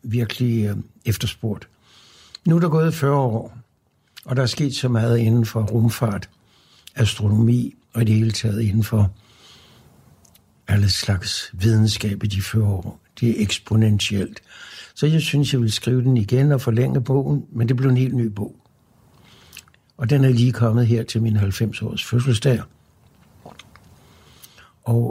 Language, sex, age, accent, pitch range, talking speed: Danish, male, 60-79, native, 105-125 Hz, 155 wpm